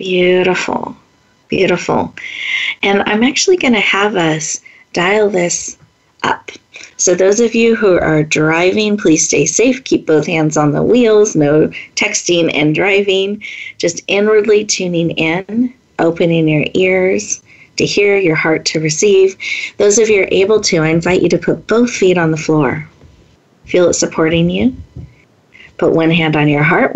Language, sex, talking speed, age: English, female, 160 wpm, 40-59